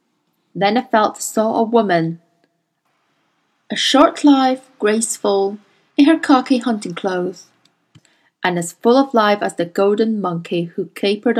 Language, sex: Chinese, female